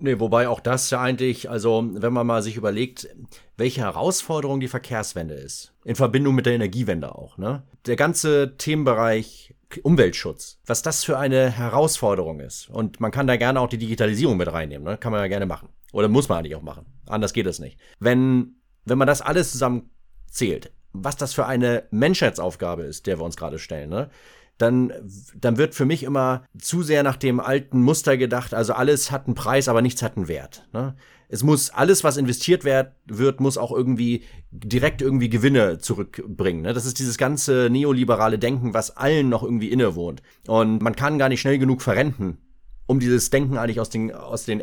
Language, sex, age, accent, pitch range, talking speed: English, male, 30-49, German, 105-135 Hz, 190 wpm